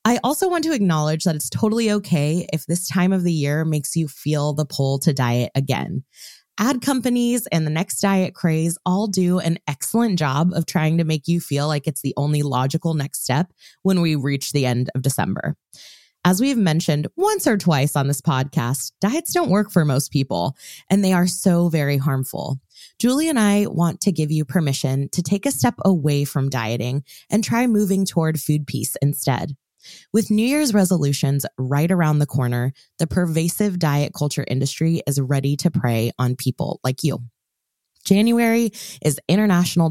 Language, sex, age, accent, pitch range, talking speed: English, female, 20-39, American, 140-190 Hz, 185 wpm